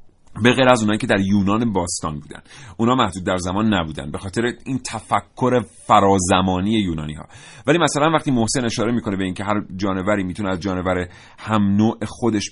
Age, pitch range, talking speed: 30-49, 95-125 Hz, 175 wpm